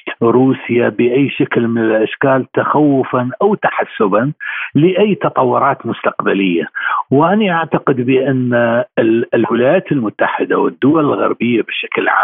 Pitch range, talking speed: 120-160 Hz, 95 wpm